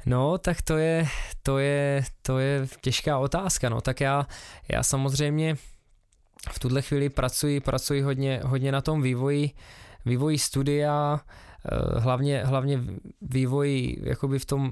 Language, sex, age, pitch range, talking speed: Czech, male, 20-39, 125-140 Hz, 130 wpm